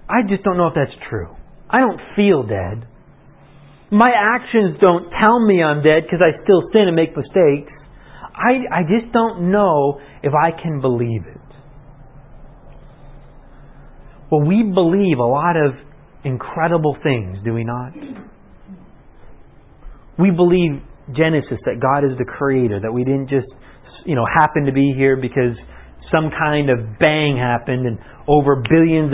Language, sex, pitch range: English, male, 135-175 Hz